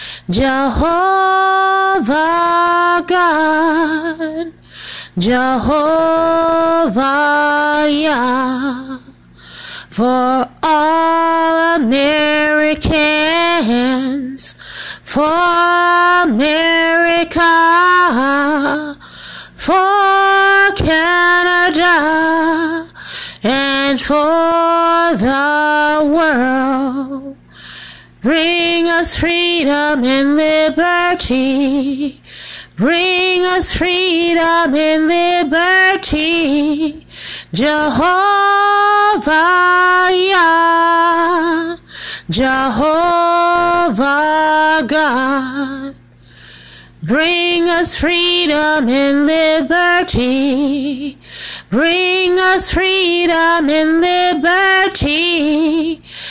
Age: 30-49